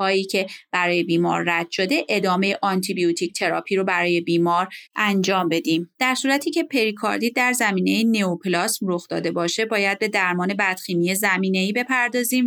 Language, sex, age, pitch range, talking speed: Persian, female, 30-49, 175-215 Hz, 155 wpm